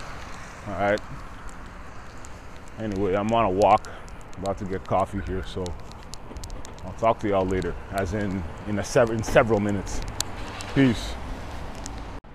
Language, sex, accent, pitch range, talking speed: English, male, American, 95-120 Hz, 115 wpm